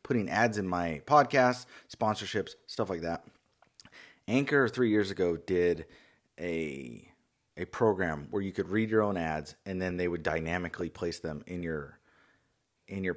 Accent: American